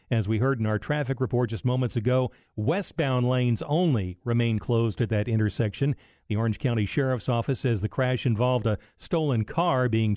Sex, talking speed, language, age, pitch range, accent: male, 185 wpm, English, 40-59, 115-140 Hz, American